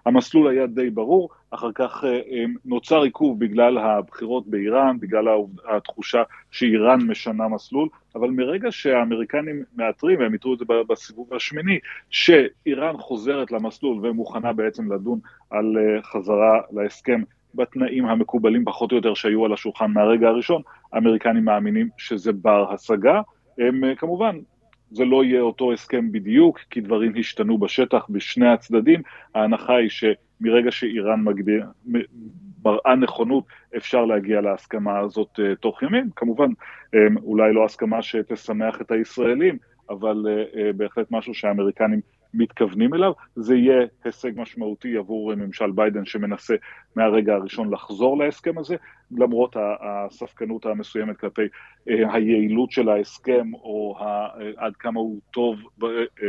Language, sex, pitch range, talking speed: Hebrew, male, 110-130 Hz, 125 wpm